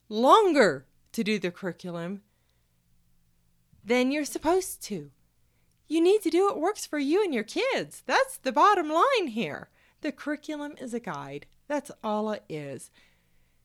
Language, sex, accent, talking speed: English, female, American, 150 wpm